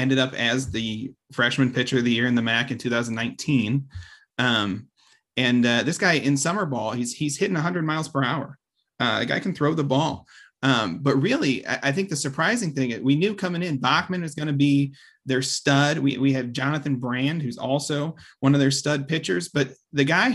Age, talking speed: 30-49, 210 wpm